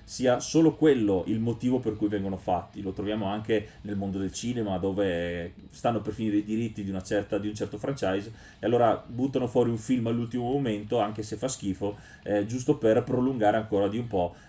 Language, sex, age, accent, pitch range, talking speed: Italian, male, 30-49, native, 100-120 Hz, 190 wpm